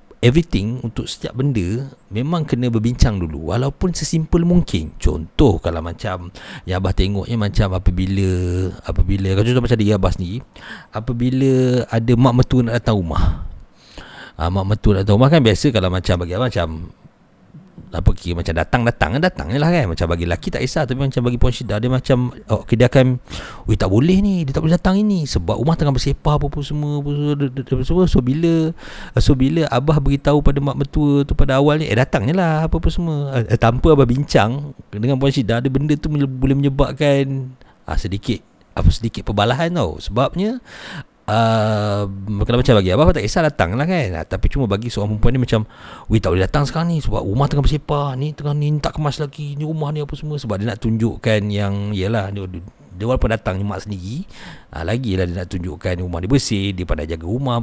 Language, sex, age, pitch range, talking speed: Malay, male, 40-59, 100-145 Hz, 195 wpm